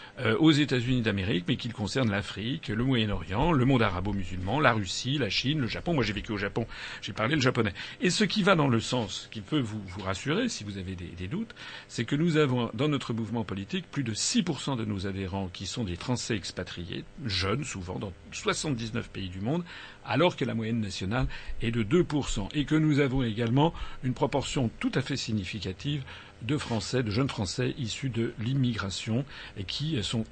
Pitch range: 100-140 Hz